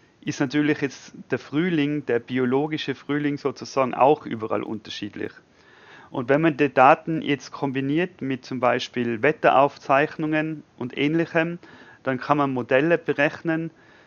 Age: 40-59